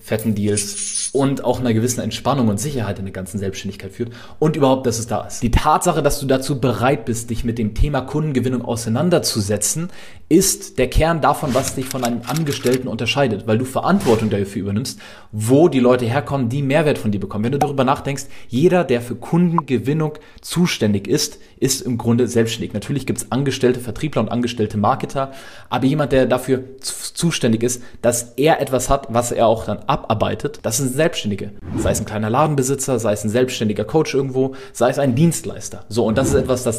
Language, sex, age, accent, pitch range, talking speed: German, male, 30-49, German, 110-135 Hz, 190 wpm